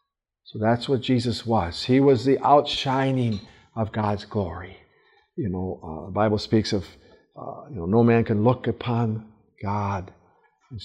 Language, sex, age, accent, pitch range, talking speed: English, male, 50-69, American, 105-140 Hz, 170 wpm